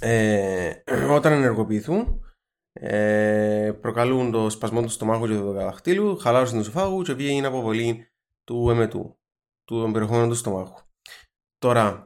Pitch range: 105-135 Hz